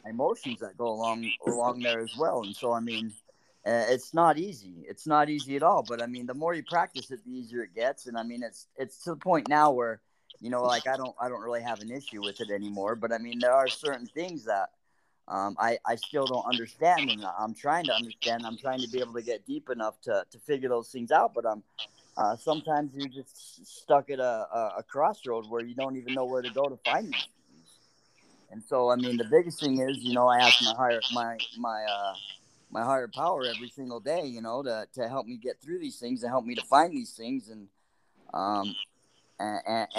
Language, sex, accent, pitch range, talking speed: English, male, American, 115-145 Hz, 235 wpm